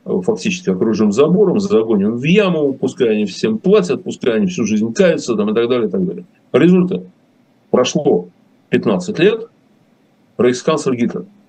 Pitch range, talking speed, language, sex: 145-210 Hz, 140 wpm, Russian, male